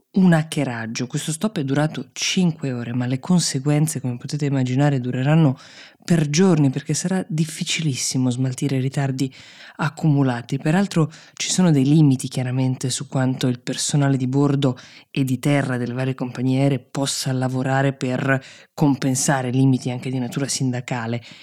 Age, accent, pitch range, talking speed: 20-39, native, 130-160 Hz, 145 wpm